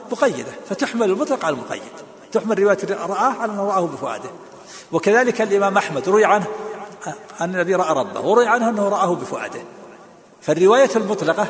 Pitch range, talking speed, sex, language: 155-205 Hz, 150 wpm, male, Arabic